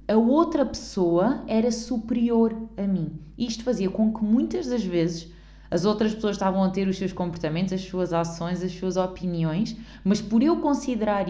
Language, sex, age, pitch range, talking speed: Portuguese, female, 20-39, 180-225 Hz, 175 wpm